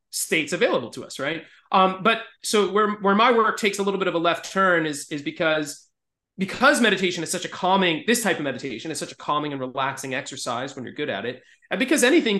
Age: 30-49